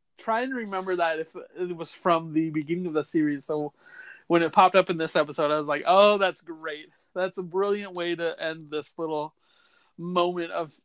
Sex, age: male, 30-49